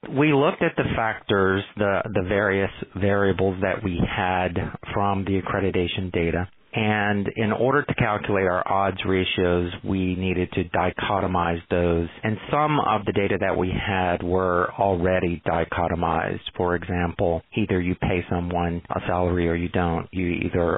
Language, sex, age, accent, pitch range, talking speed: English, male, 40-59, American, 90-105 Hz, 155 wpm